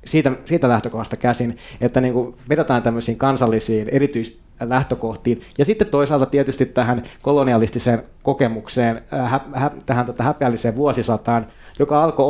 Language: Finnish